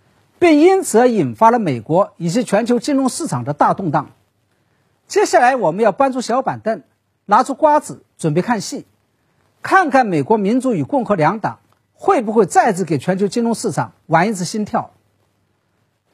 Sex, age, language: male, 50-69, Chinese